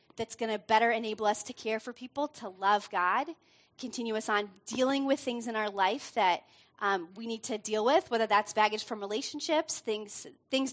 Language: English